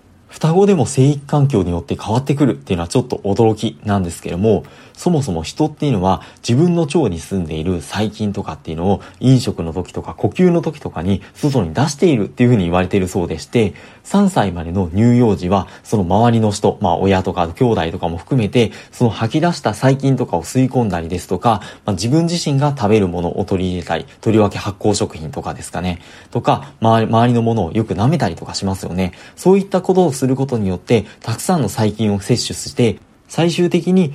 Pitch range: 95-140 Hz